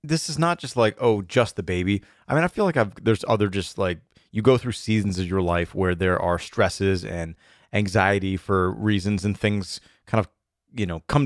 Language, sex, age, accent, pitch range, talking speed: English, male, 30-49, American, 90-115 Hz, 220 wpm